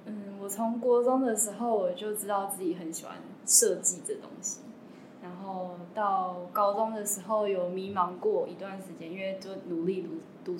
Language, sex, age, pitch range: Chinese, female, 10-29, 180-225 Hz